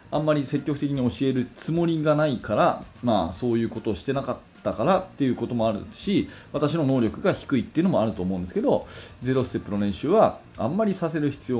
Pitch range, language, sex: 105-155 Hz, Japanese, male